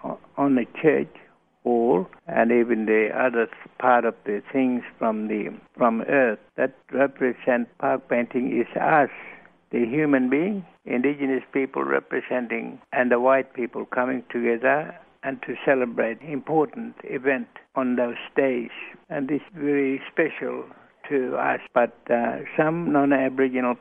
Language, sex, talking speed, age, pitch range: English, male, 135 wpm, 60-79, 120-140 Hz